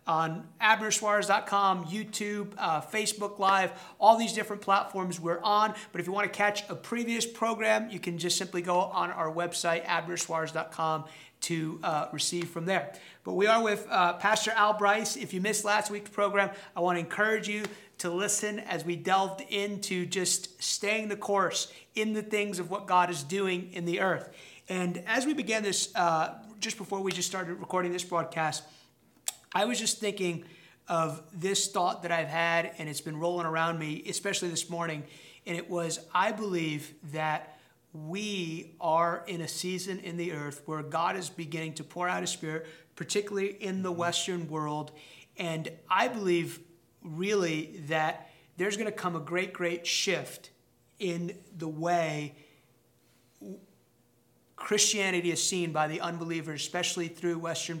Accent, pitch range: American, 165-200 Hz